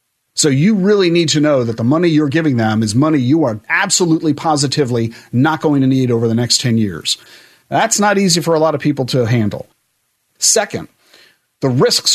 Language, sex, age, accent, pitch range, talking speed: English, male, 40-59, American, 130-185 Hz, 200 wpm